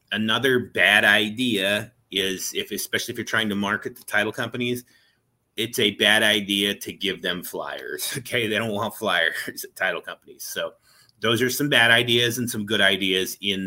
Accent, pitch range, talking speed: American, 95-120 Hz, 180 wpm